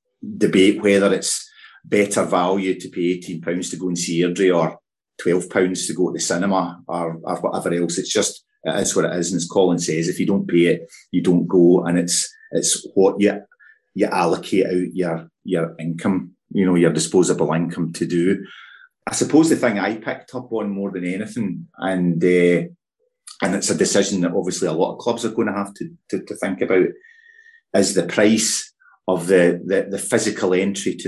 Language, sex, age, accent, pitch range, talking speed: English, male, 30-49, British, 90-115 Hz, 200 wpm